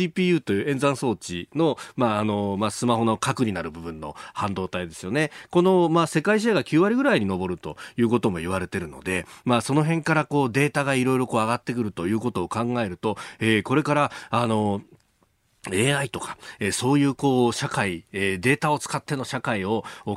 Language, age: Japanese, 40-59